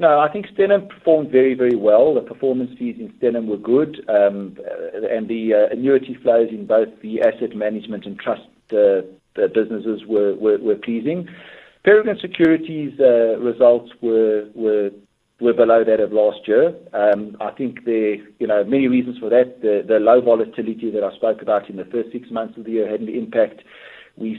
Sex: male